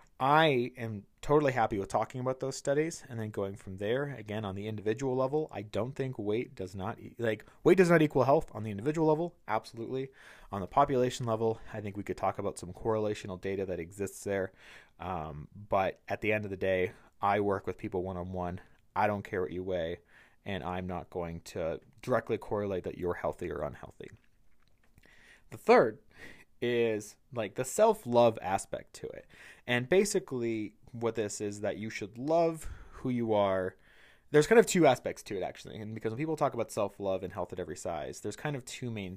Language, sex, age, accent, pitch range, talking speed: English, male, 30-49, American, 100-130 Hz, 200 wpm